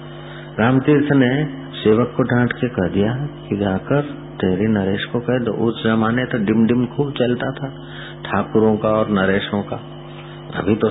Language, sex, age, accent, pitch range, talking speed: Hindi, male, 50-69, native, 100-160 Hz, 165 wpm